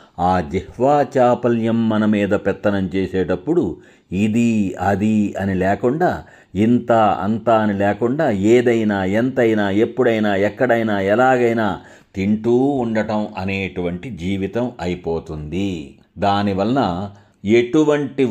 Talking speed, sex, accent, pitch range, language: 90 wpm, male, native, 95-115 Hz, Telugu